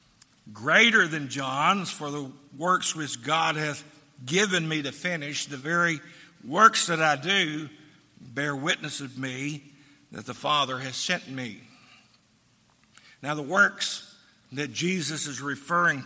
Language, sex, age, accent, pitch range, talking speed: English, male, 60-79, American, 145-195 Hz, 135 wpm